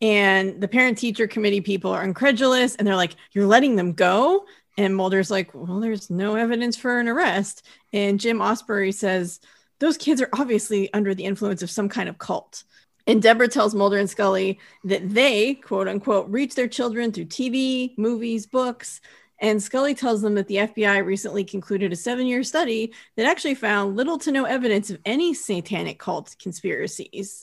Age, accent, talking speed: 30-49, American, 175 wpm